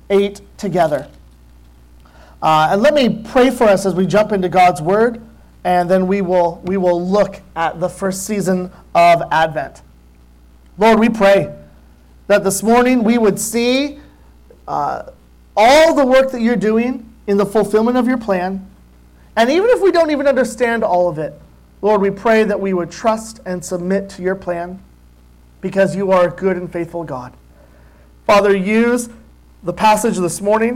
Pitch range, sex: 160-225 Hz, male